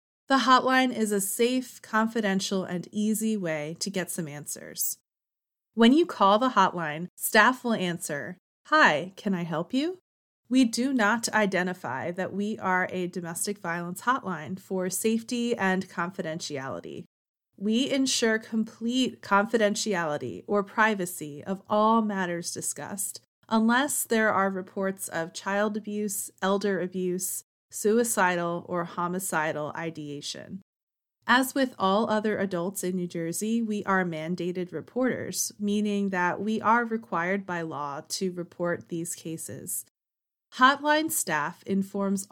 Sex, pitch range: female, 175-225 Hz